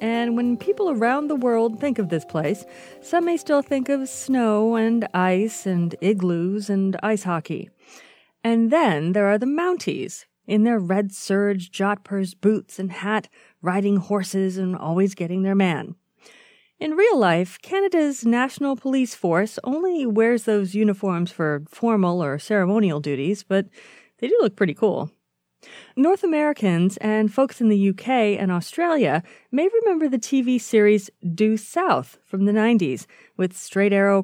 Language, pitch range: English, 195-260 Hz